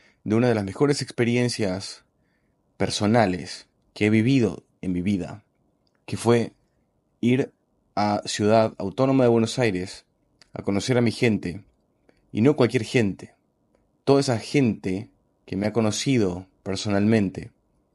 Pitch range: 95-120 Hz